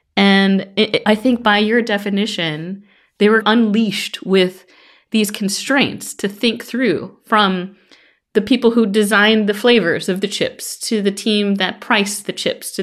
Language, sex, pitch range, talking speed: English, female, 195-245 Hz, 155 wpm